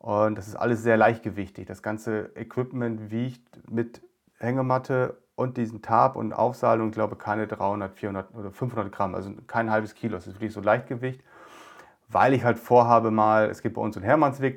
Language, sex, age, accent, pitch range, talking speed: German, male, 40-59, German, 105-130 Hz, 190 wpm